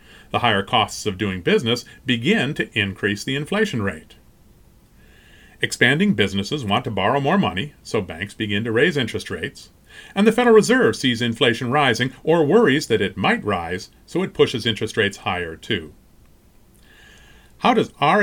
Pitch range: 105-165 Hz